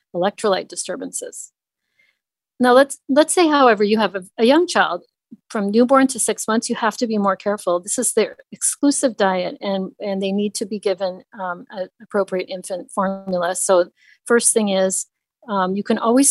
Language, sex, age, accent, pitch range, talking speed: English, female, 40-59, American, 180-220 Hz, 175 wpm